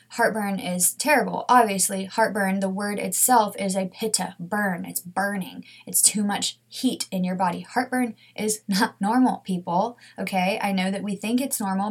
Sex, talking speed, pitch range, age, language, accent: female, 170 wpm, 190-225 Hz, 20-39, English, American